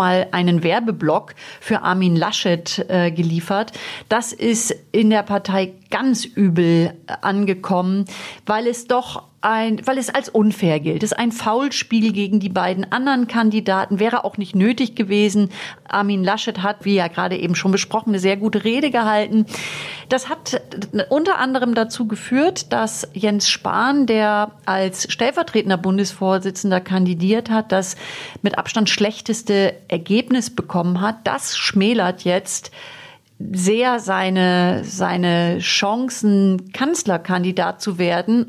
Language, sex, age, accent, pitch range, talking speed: German, female, 40-59, German, 185-220 Hz, 130 wpm